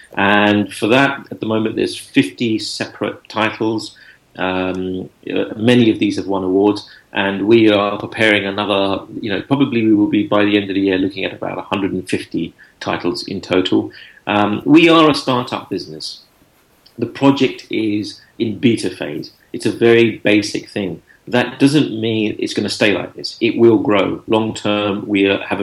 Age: 40-59